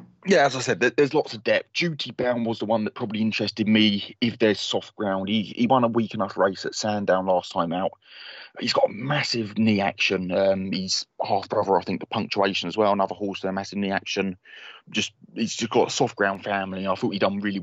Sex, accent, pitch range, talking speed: male, British, 95-110 Hz, 230 wpm